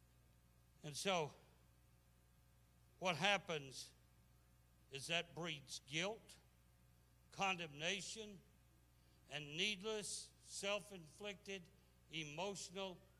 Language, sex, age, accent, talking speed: English, male, 60-79, American, 60 wpm